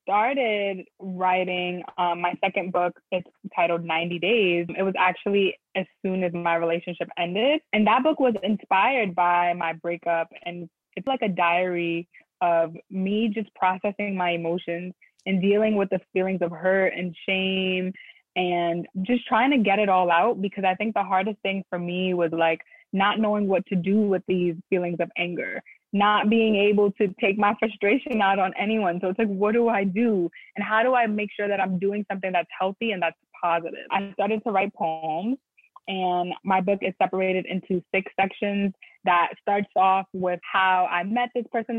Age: 20-39